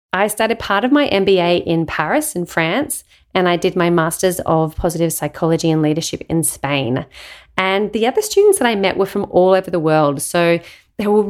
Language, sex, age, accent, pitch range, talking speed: English, female, 30-49, Australian, 165-210 Hz, 200 wpm